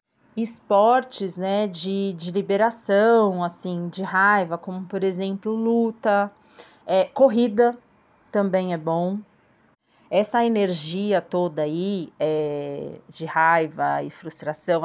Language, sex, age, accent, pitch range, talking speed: Portuguese, female, 30-49, Brazilian, 170-205 Hz, 105 wpm